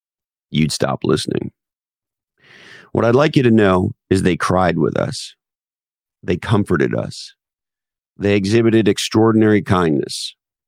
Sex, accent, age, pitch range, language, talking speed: male, American, 50-69, 90-110 Hz, English, 120 wpm